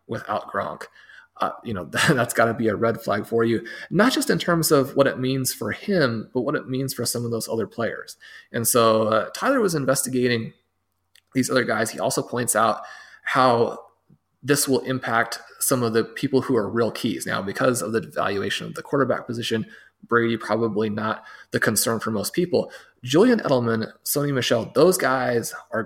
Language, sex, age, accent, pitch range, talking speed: English, male, 20-39, American, 110-130 Hz, 195 wpm